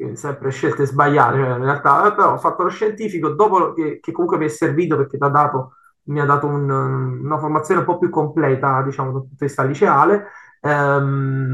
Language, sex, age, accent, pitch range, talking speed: Italian, male, 20-39, native, 140-170 Hz, 185 wpm